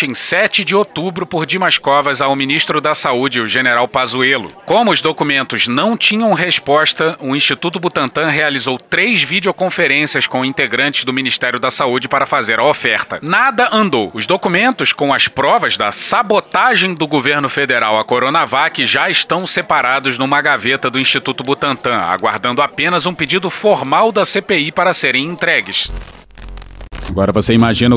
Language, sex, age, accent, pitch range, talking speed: Portuguese, male, 30-49, Brazilian, 130-180 Hz, 150 wpm